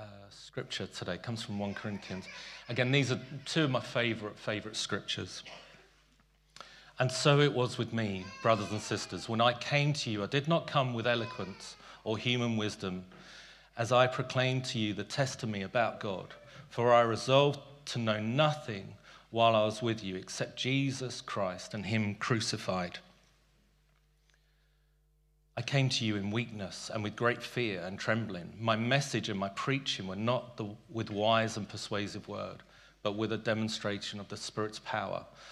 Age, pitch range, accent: 40-59, 105-130 Hz, British